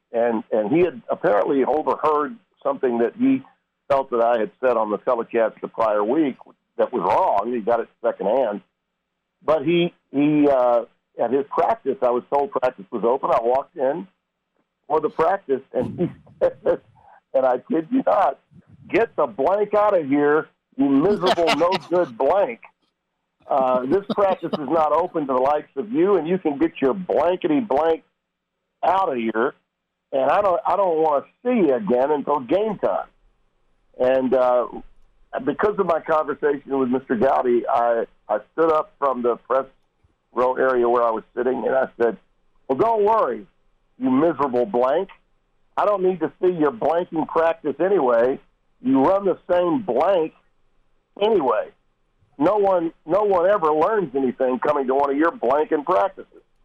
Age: 50-69